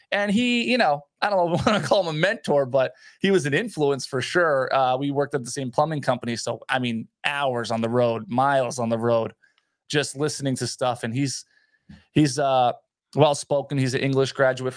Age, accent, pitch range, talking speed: 20-39, American, 130-170 Hz, 220 wpm